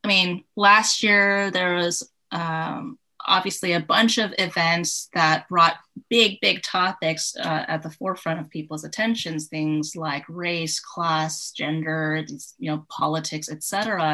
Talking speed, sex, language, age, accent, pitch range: 135 wpm, female, English, 20-39, American, 155-200 Hz